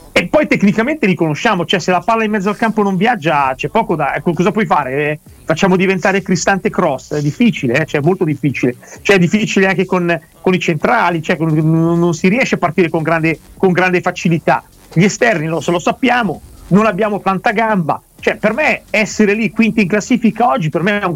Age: 40-59